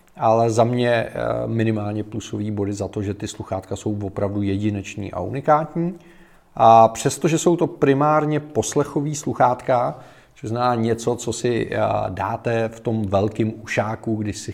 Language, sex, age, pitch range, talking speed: Czech, male, 40-59, 105-130 Hz, 145 wpm